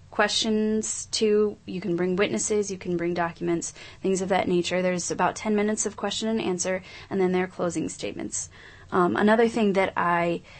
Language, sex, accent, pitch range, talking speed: English, female, American, 175-205 Hz, 185 wpm